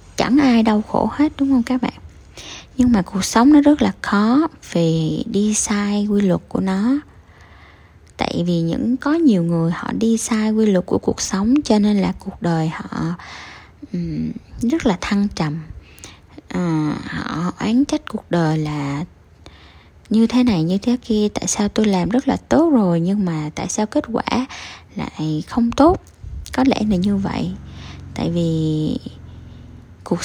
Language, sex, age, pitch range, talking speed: Vietnamese, female, 20-39, 165-235 Hz, 170 wpm